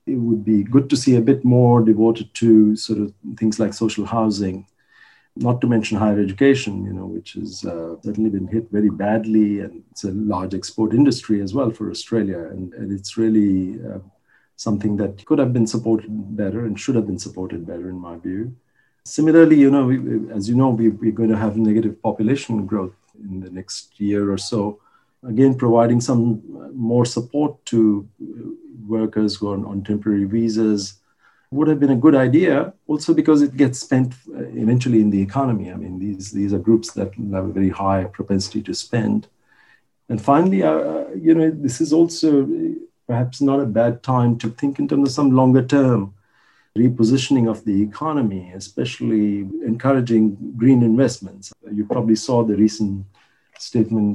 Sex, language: male, English